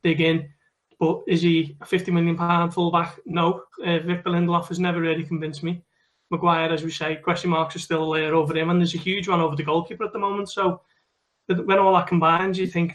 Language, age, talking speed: English, 20-39, 220 wpm